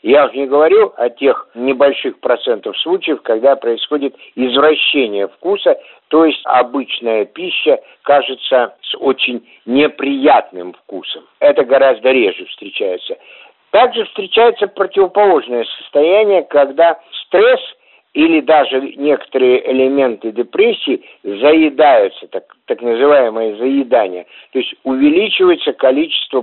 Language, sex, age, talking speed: Russian, male, 50-69, 105 wpm